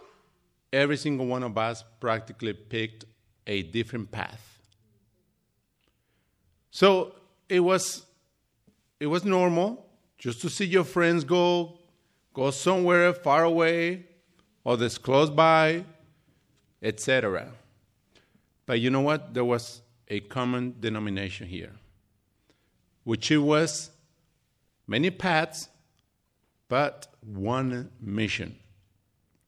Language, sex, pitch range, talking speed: English, male, 115-170 Hz, 100 wpm